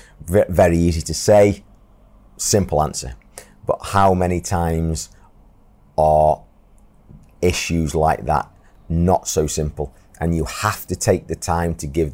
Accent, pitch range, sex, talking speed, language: British, 80-90 Hz, male, 130 wpm, English